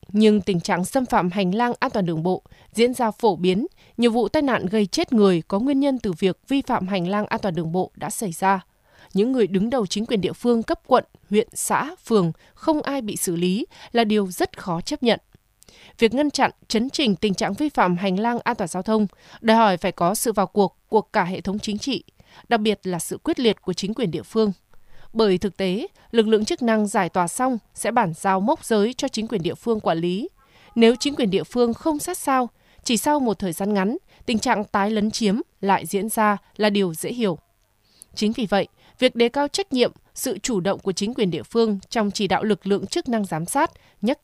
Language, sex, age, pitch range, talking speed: Vietnamese, female, 20-39, 195-240 Hz, 235 wpm